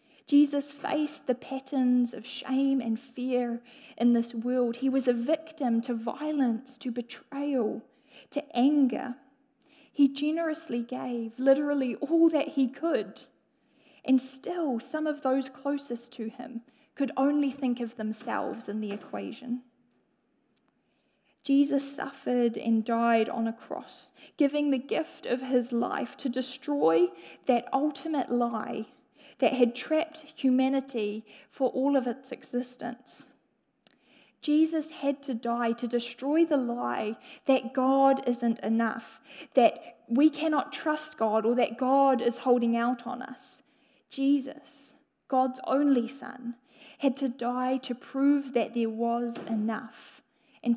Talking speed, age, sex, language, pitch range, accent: 130 wpm, 10-29, female, English, 235-280 Hz, Australian